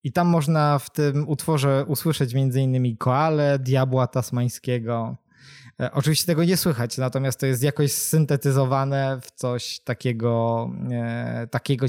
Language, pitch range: Polish, 130-155 Hz